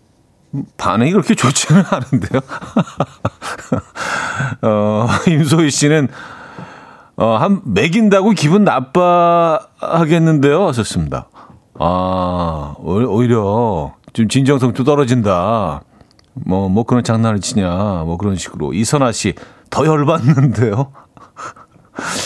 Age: 40-59